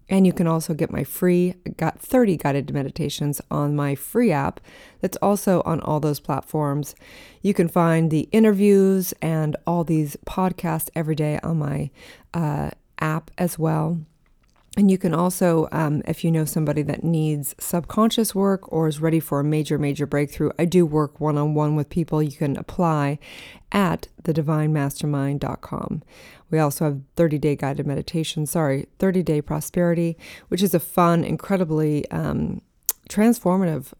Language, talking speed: English, 150 wpm